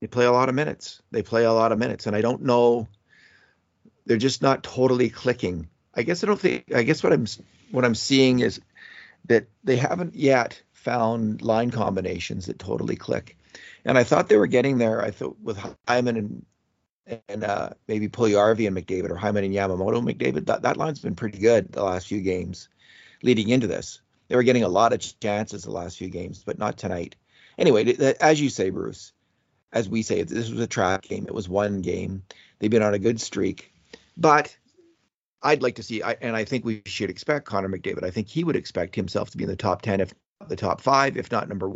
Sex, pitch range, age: male, 100-125 Hz, 40-59